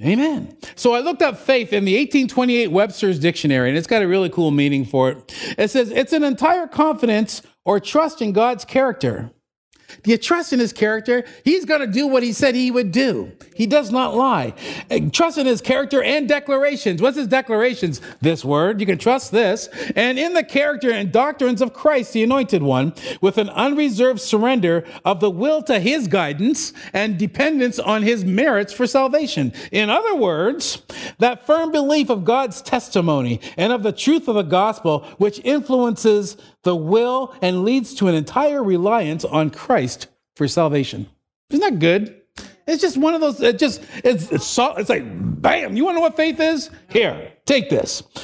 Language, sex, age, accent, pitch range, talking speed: English, male, 40-59, American, 195-275 Hz, 185 wpm